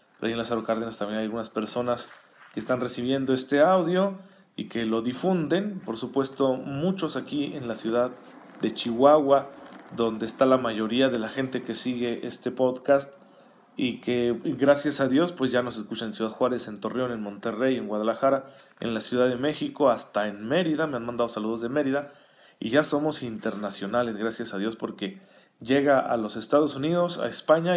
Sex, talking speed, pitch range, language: male, 180 wpm, 115-145 Hz, Spanish